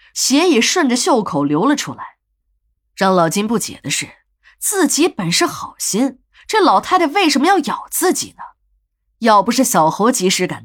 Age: 20-39